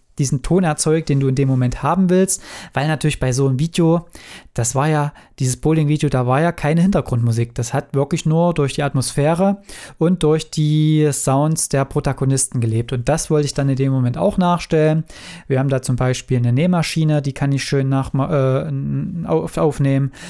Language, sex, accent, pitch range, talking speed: German, male, German, 135-155 Hz, 190 wpm